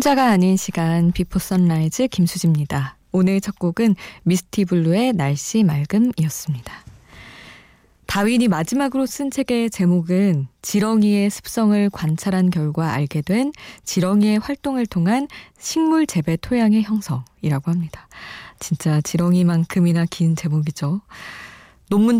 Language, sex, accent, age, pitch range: Korean, female, native, 20-39, 155-200 Hz